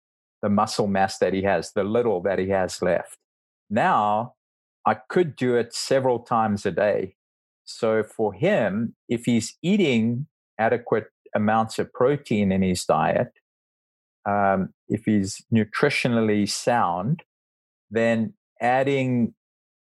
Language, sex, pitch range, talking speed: English, male, 95-120 Hz, 125 wpm